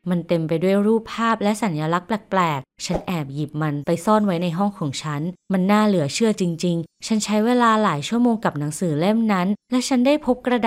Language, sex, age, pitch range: Thai, female, 20-39, 165-220 Hz